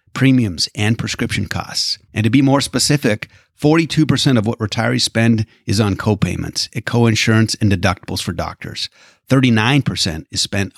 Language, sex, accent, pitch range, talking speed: English, male, American, 100-120 Hz, 140 wpm